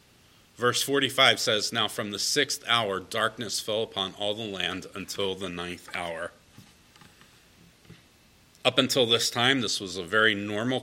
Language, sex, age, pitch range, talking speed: English, male, 40-59, 105-140 Hz, 150 wpm